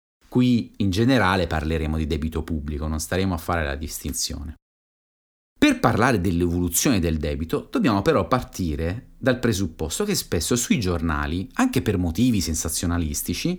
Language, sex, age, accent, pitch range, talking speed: Italian, male, 30-49, native, 80-125 Hz, 135 wpm